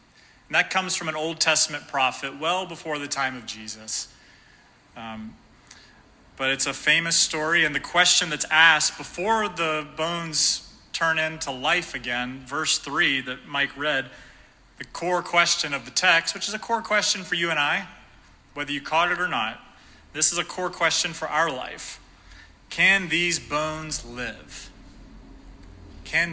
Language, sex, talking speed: English, male, 160 wpm